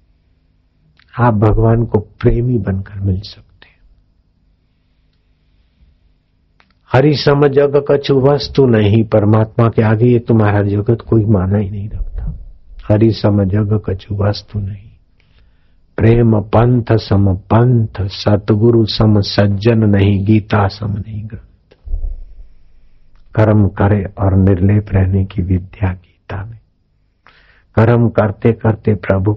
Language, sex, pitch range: Hindi, male, 85-110 Hz